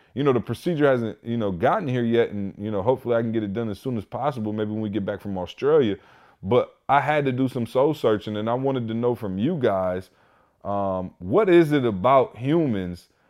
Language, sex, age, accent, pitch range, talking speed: English, male, 30-49, American, 110-140 Hz, 235 wpm